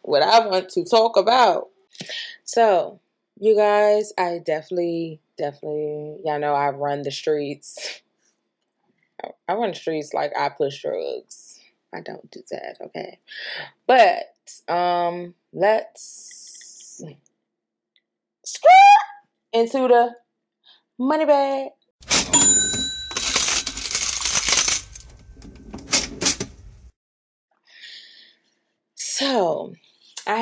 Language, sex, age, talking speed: English, female, 20-39, 80 wpm